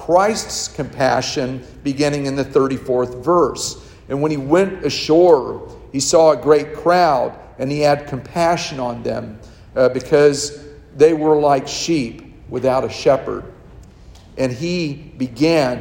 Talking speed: 130 wpm